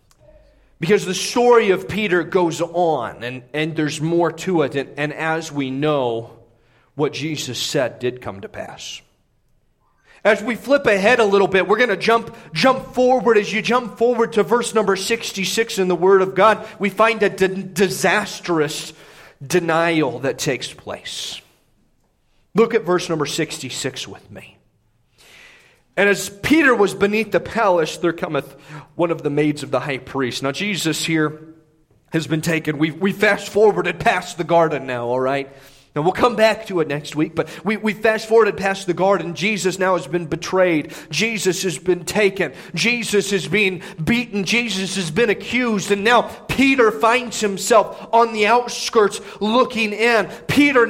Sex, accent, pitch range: male, American, 165-235 Hz